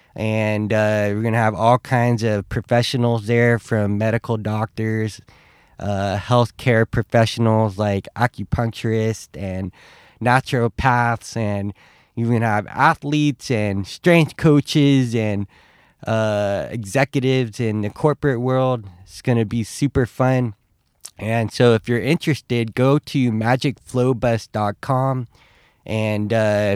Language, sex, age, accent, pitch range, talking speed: English, male, 20-39, American, 105-130 Hz, 120 wpm